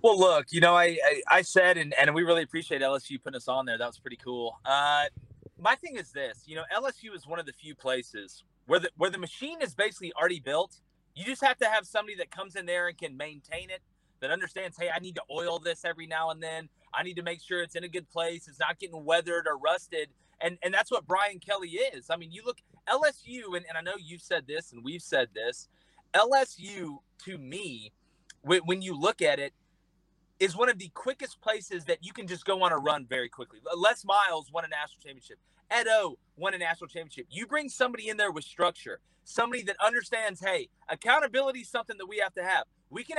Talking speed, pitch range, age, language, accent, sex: 230 wpm, 165-240 Hz, 30-49, English, American, male